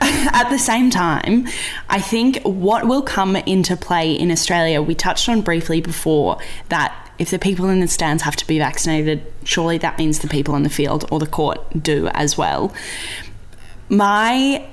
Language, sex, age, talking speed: English, female, 10-29, 180 wpm